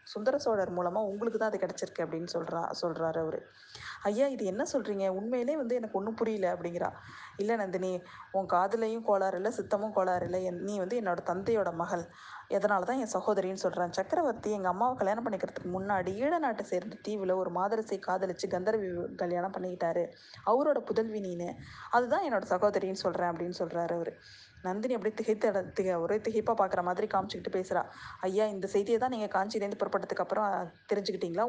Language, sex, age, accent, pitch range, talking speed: Tamil, female, 20-39, native, 180-225 Hz, 160 wpm